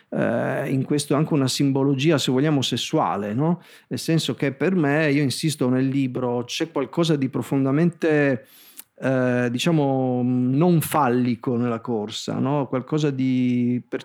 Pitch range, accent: 125-160 Hz, native